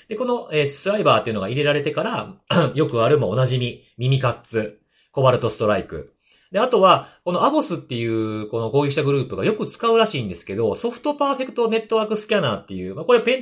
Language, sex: Japanese, male